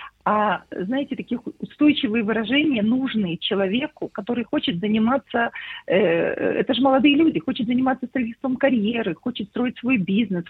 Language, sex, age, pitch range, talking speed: English, female, 50-69, 215-260 Hz, 130 wpm